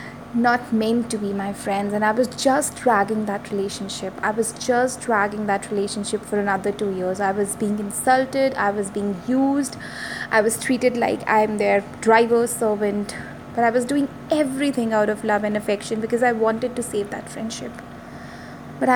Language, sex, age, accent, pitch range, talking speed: English, female, 20-39, Indian, 210-250 Hz, 180 wpm